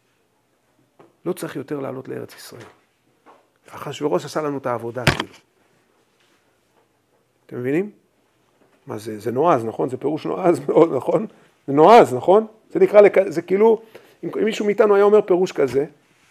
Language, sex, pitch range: Hebrew, male, 140-190 Hz